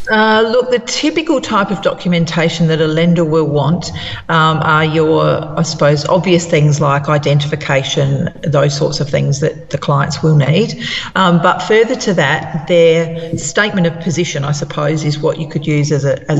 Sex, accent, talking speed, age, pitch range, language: female, Australian, 170 wpm, 40-59, 155-175 Hz, English